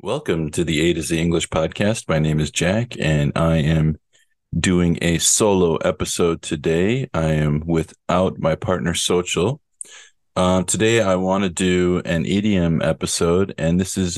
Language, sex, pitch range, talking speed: English, male, 90-120 Hz, 160 wpm